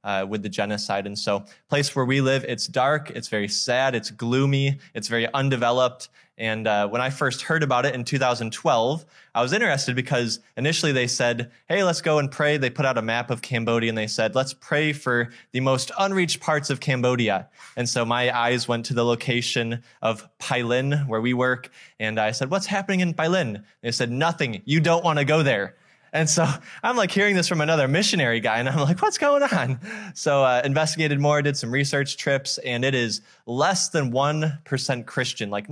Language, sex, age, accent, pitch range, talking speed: English, male, 20-39, American, 115-145 Hz, 205 wpm